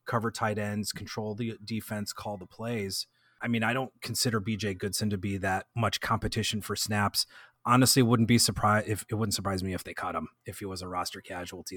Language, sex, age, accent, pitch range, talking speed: English, male, 30-49, American, 100-120 Hz, 215 wpm